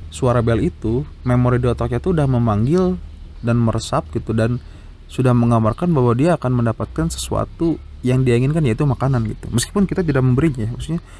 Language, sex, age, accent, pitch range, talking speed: English, male, 20-39, Indonesian, 110-150 Hz, 160 wpm